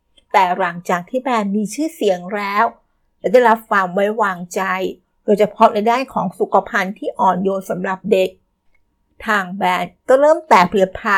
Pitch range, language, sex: 195-230 Hz, Thai, female